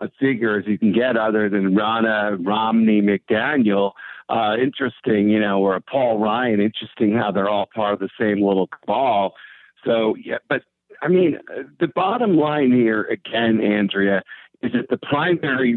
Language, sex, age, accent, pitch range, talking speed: English, male, 50-69, American, 105-130 Hz, 165 wpm